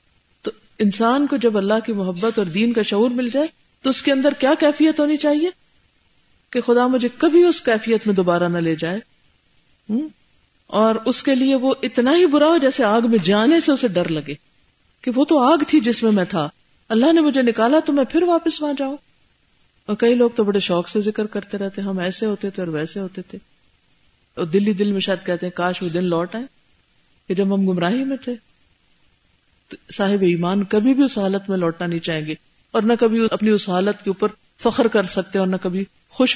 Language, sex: Urdu, female